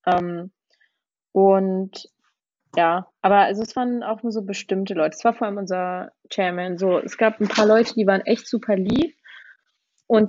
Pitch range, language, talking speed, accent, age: 190-220 Hz, German, 175 wpm, German, 20-39